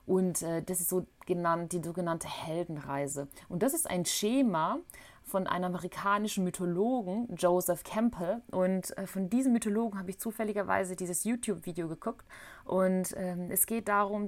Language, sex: German, female